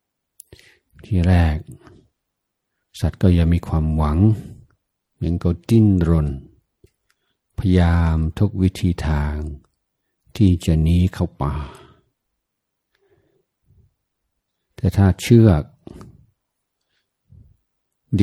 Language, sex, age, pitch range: Thai, male, 60-79, 80-100 Hz